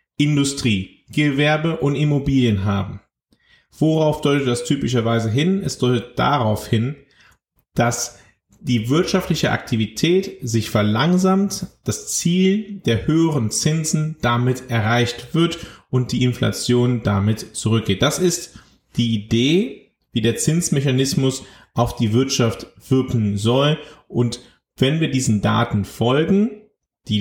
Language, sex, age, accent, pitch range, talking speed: German, male, 30-49, German, 110-140 Hz, 115 wpm